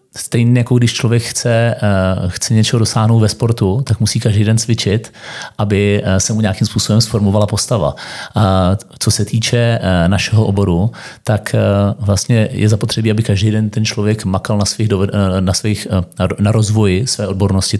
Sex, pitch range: male, 100-115 Hz